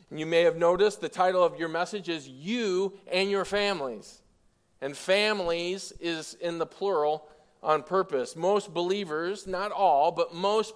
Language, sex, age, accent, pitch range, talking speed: English, male, 40-59, American, 155-200 Hz, 155 wpm